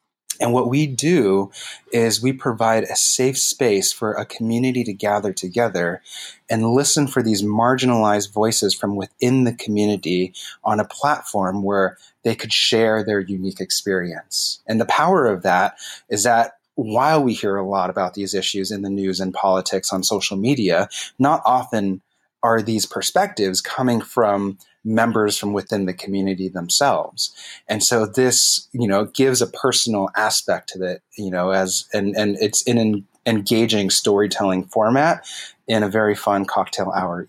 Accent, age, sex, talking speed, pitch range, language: American, 30-49, male, 160 wpm, 95-120 Hz, English